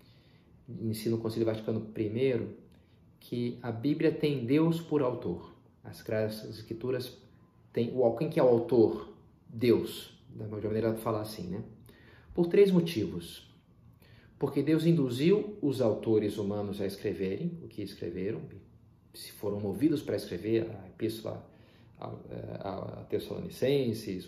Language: Portuguese